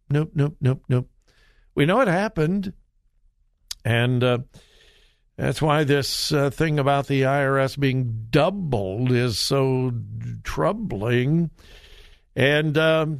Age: 60-79